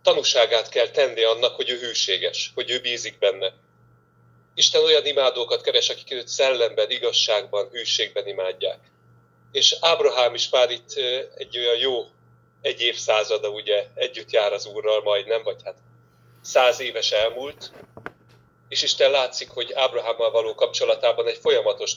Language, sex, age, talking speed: Hungarian, male, 30-49, 140 wpm